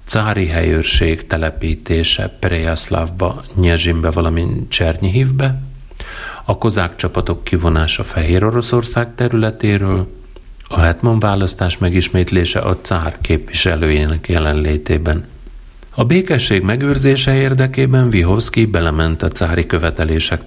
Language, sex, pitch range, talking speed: Hungarian, male, 80-110 Hz, 90 wpm